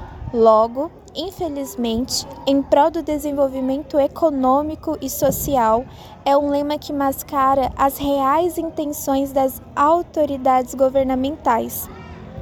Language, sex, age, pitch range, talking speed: Portuguese, female, 20-39, 260-295 Hz, 95 wpm